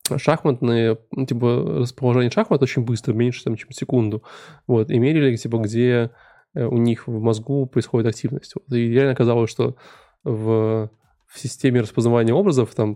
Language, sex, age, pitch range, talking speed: Russian, male, 20-39, 115-135 Hz, 150 wpm